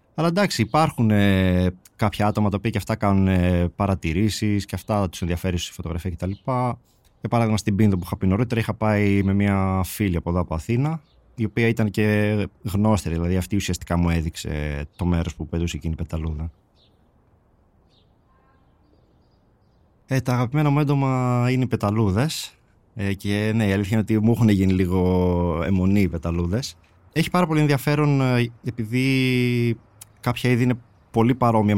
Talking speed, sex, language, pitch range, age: 165 wpm, male, Greek, 95-115 Hz, 20-39